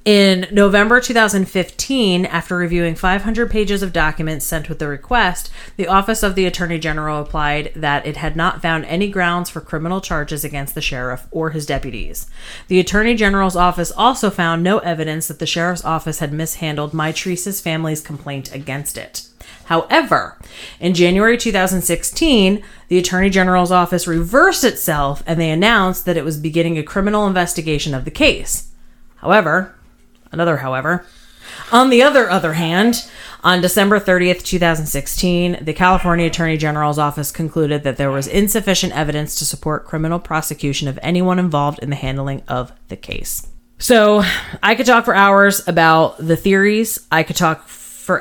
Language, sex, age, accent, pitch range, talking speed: English, female, 30-49, American, 150-185 Hz, 160 wpm